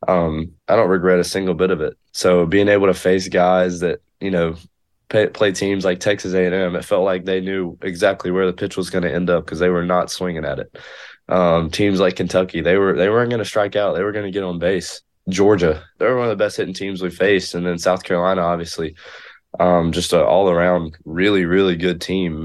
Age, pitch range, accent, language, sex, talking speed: 20-39, 85-95 Hz, American, English, male, 240 wpm